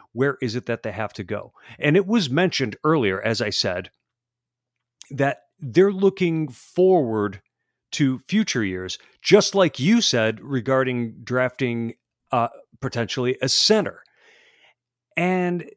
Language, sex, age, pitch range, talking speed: English, male, 40-59, 115-165 Hz, 130 wpm